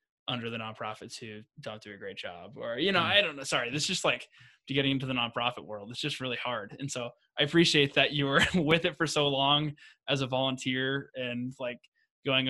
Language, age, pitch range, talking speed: English, 20-39, 120-145 Hz, 225 wpm